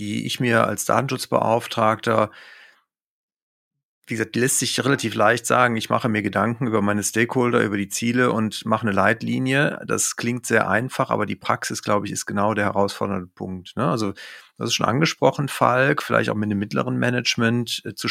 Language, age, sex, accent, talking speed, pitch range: German, 40-59, male, German, 180 wpm, 105-120 Hz